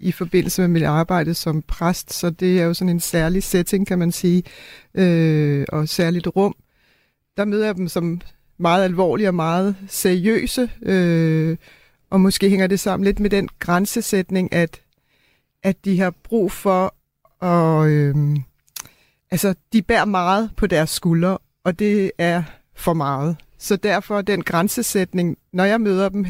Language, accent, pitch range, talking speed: Danish, native, 170-200 Hz, 160 wpm